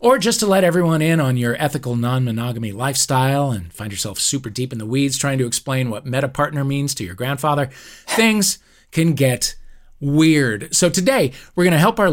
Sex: male